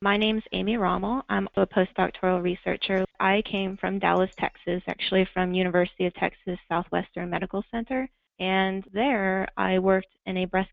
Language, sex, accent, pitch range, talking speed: English, female, American, 180-200 Hz, 160 wpm